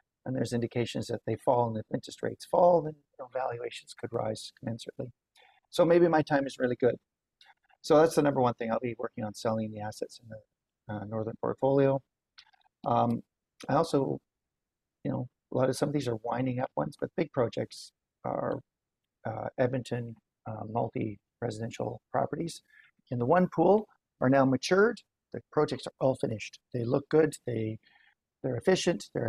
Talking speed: 175 wpm